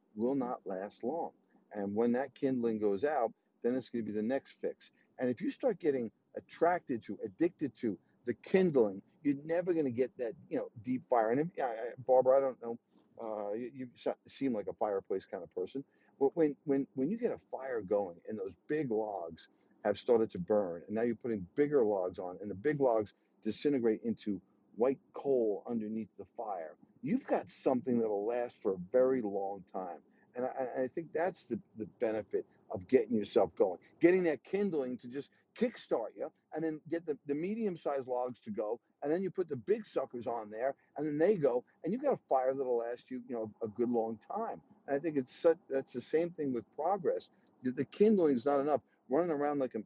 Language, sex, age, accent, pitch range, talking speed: English, male, 50-69, American, 115-175 Hz, 210 wpm